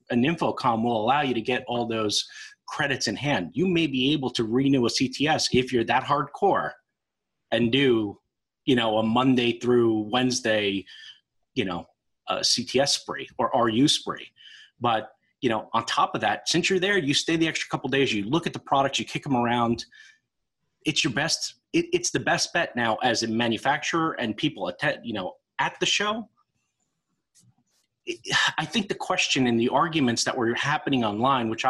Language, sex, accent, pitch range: English, male, American, 120-155 Hz